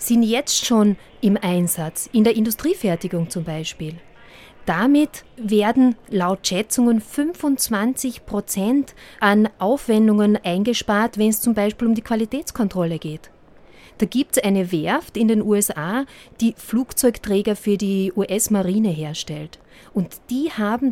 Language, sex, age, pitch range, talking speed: German, female, 30-49, 180-235 Hz, 125 wpm